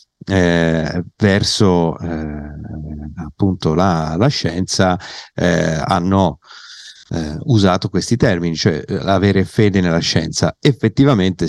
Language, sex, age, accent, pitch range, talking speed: Italian, male, 50-69, native, 85-105 Hz, 100 wpm